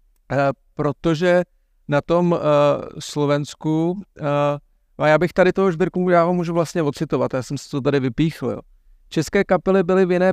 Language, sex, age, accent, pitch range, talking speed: Czech, male, 40-59, native, 145-165 Hz, 155 wpm